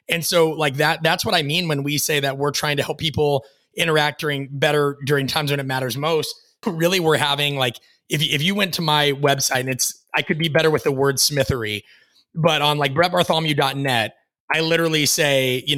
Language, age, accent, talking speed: English, 30-49, American, 210 wpm